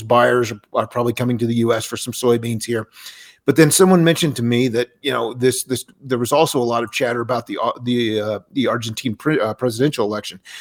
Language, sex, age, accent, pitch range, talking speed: English, male, 40-59, American, 120-145 Hz, 215 wpm